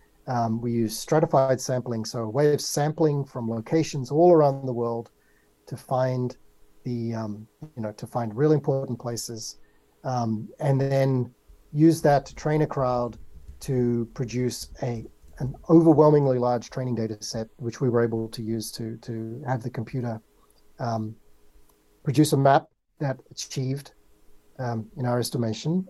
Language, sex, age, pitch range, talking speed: English, male, 40-59, 115-140 Hz, 155 wpm